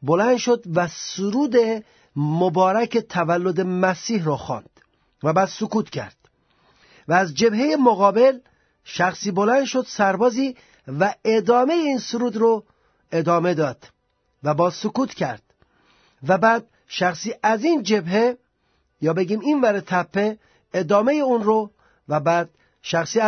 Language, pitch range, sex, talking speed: Persian, 180-235 Hz, male, 125 wpm